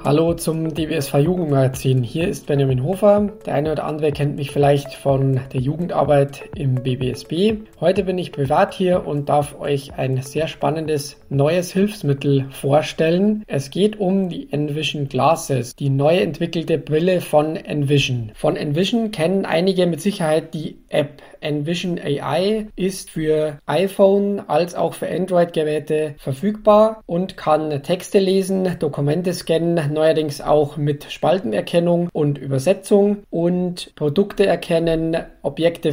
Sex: male